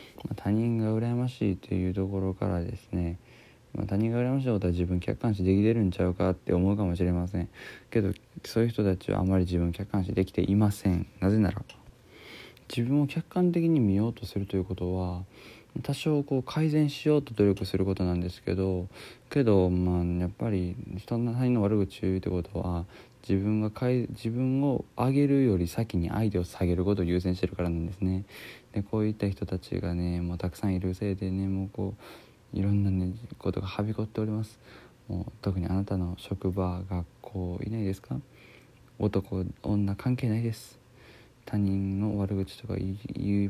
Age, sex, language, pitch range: 20-39, male, Japanese, 90-115 Hz